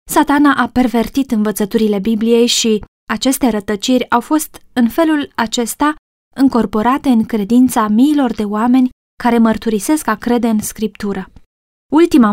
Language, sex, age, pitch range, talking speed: Romanian, female, 20-39, 220-255 Hz, 125 wpm